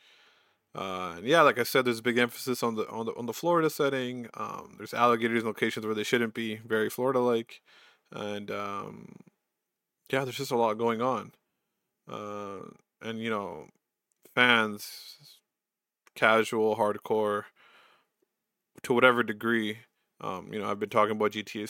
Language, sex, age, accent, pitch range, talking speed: English, male, 20-39, American, 110-120 Hz, 160 wpm